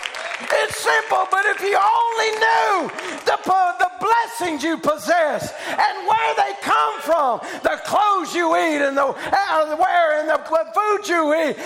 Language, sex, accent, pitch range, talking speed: English, male, American, 270-350 Hz, 165 wpm